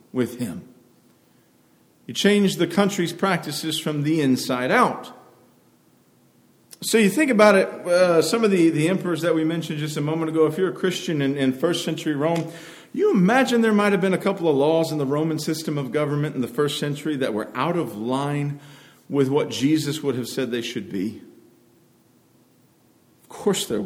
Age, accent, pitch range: 50-69, American, 155-200 Hz